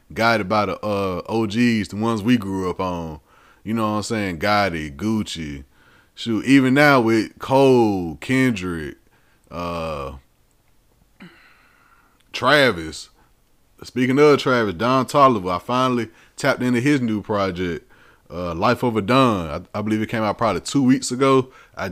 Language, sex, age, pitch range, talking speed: English, male, 30-49, 100-130 Hz, 140 wpm